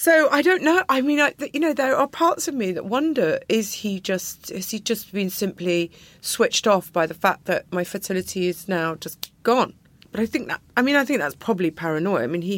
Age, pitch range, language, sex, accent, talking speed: 40-59, 160-205 Hz, English, female, British, 240 wpm